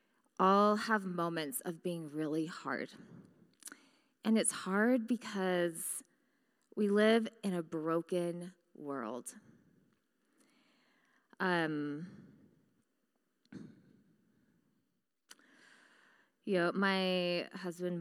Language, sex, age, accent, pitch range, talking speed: English, female, 20-39, American, 170-225 Hz, 75 wpm